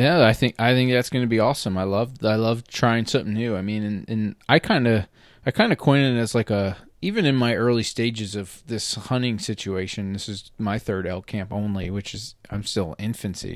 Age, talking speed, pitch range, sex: 30-49, 235 wpm, 105-140 Hz, male